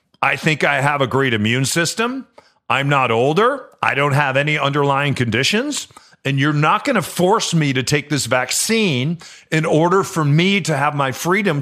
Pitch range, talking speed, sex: 130-175 Hz, 185 wpm, male